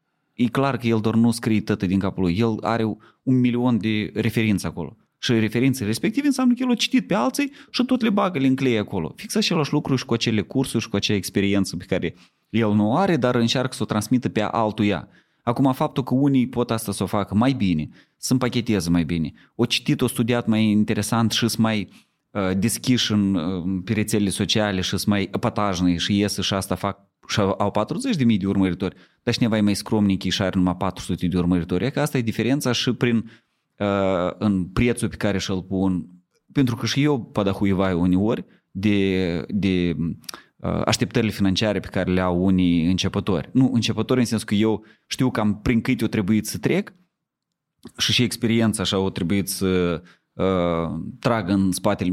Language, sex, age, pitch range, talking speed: Romanian, male, 30-49, 95-125 Hz, 205 wpm